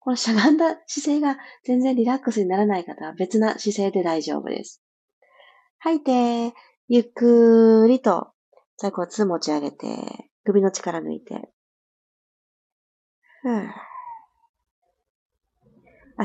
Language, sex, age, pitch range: Japanese, female, 40-59, 200-260 Hz